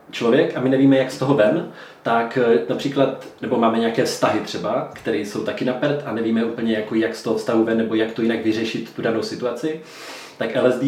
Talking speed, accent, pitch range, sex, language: 210 wpm, native, 115-130 Hz, male, Czech